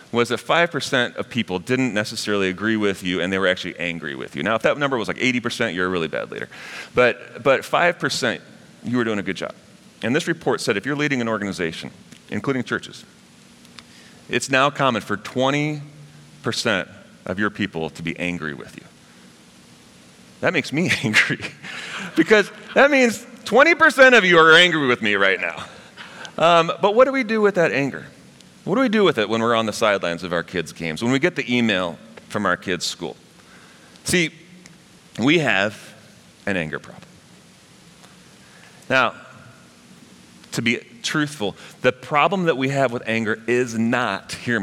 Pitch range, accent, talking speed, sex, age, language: 100-155 Hz, American, 175 wpm, male, 30-49, English